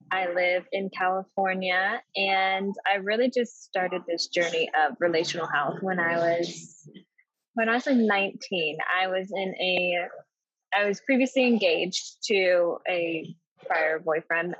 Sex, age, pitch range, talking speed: female, 10-29, 180-230 Hz, 140 wpm